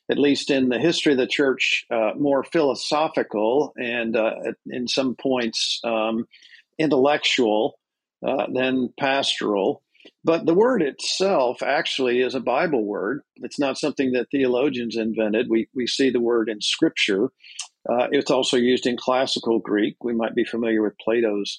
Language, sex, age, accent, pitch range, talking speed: English, male, 50-69, American, 120-150 Hz, 155 wpm